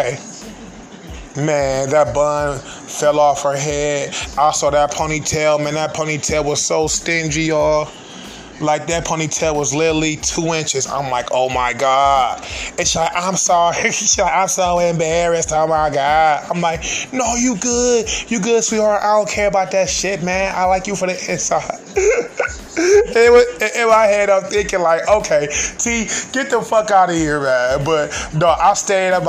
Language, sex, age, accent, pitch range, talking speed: English, male, 20-39, American, 150-200 Hz, 170 wpm